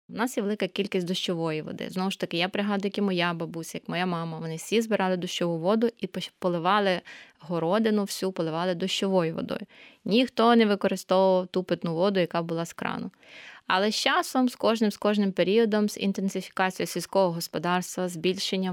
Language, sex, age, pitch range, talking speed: Ukrainian, female, 20-39, 175-215 Hz, 170 wpm